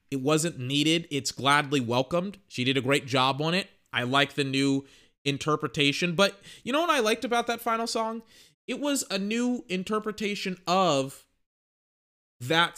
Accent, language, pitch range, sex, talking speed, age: American, English, 130-165 Hz, male, 165 wpm, 20-39